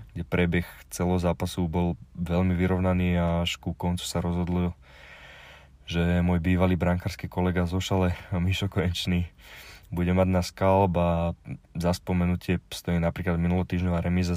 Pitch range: 85-95 Hz